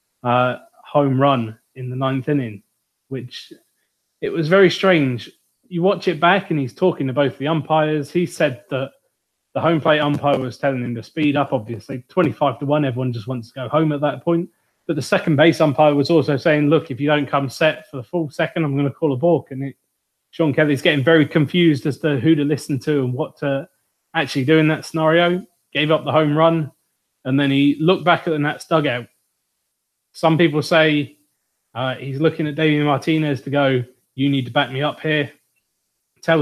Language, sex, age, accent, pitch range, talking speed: English, male, 20-39, British, 135-160 Hz, 205 wpm